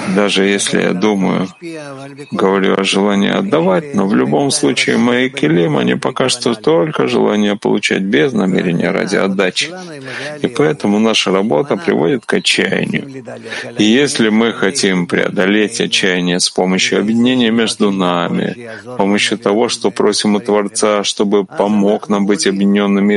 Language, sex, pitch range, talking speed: Russian, male, 100-135 Hz, 140 wpm